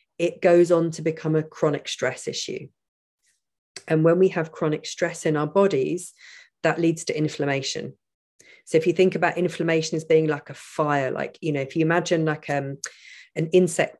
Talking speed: 185 wpm